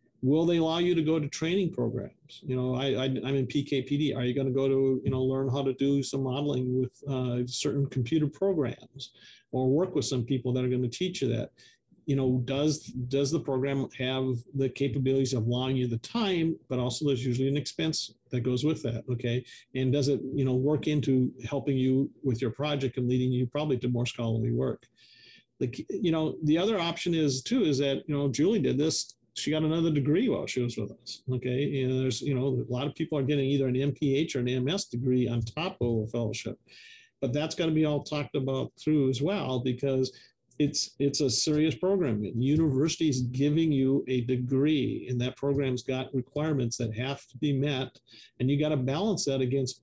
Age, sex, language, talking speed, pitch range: 50-69, male, English, 215 wpm, 125-150 Hz